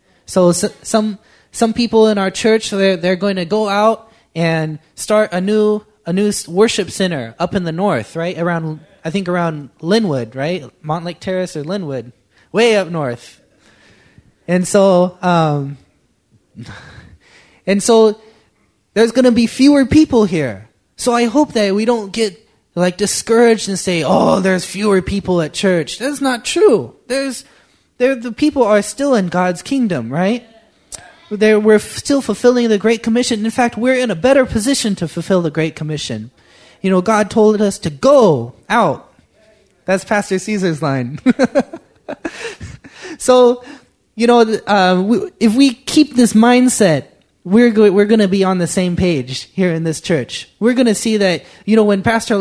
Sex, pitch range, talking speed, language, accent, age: male, 180-230 Hz, 165 wpm, English, American, 20-39